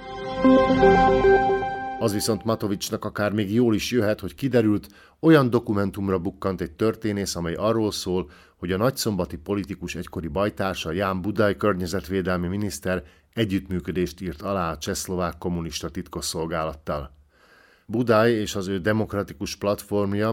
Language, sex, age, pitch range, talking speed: Hungarian, male, 50-69, 90-110 Hz, 120 wpm